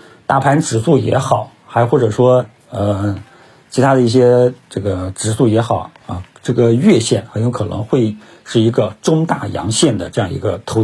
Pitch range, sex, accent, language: 105-130 Hz, male, native, Chinese